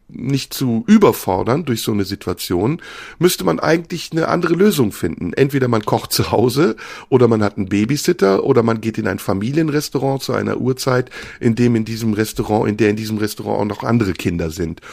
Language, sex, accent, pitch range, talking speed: German, male, German, 110-155 Hz, 195 wpm